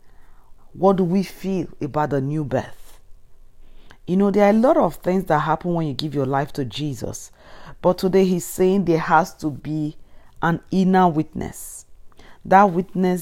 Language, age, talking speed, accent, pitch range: English, 40-59, 170 wpm, Nigerian, 135-175 Hz